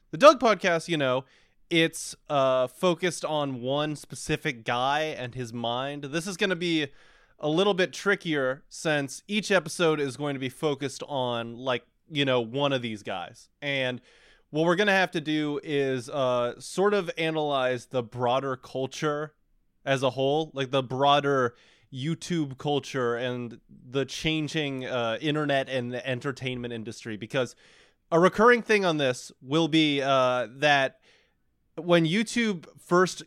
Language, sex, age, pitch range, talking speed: English, male, 20-39, 125-160 Hz, 155 wpm